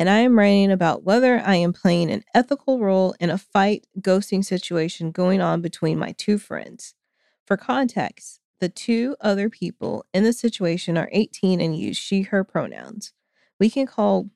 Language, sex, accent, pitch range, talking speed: English, female, American, 175-220 Hz, 175 wpm